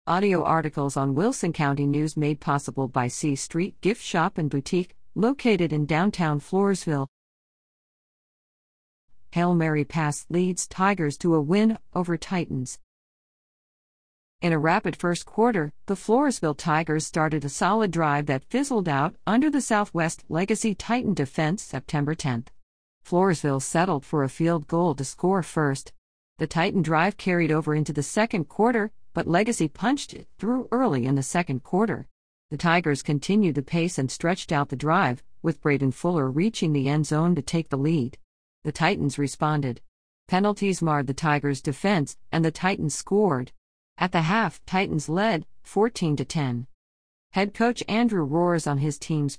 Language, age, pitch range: English, 50-69, 145-185 Hz